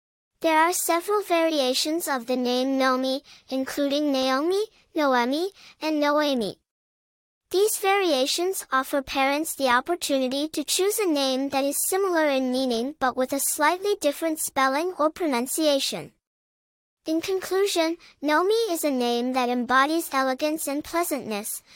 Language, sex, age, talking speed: English, male, 10-29, 130 wpm